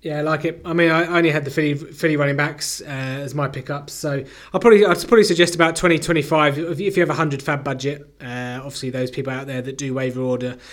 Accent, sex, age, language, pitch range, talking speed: British, male, 20-39, English, 130-150 Hz, 245 wpm